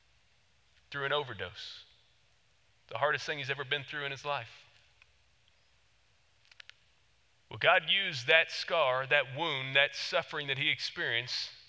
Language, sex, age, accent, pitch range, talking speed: English, male, 40-59, American, 145-200 Hz, 130 wpm